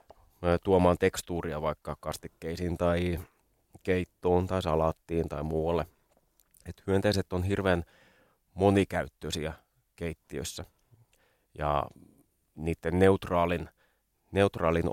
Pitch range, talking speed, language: 80-90 Hz, 80 wpm, Finnish